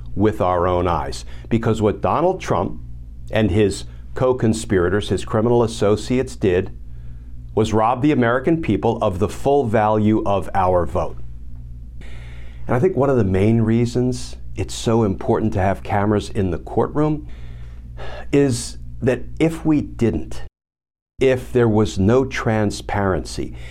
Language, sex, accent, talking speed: English, male, American, 135 wpm